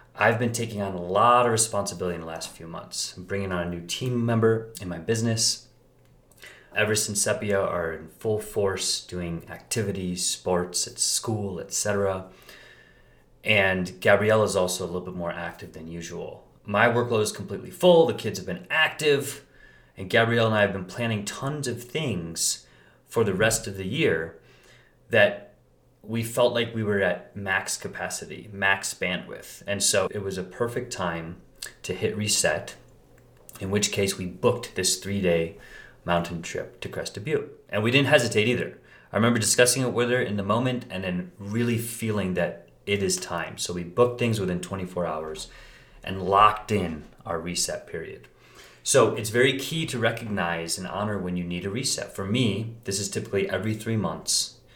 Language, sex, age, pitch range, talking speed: English, male, 30-49, 90-115 Hz, 180 wpm